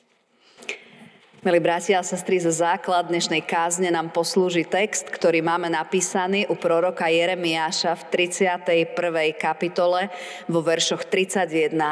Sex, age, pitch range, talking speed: female, 30-49, 170-200 Hz, 115 wpm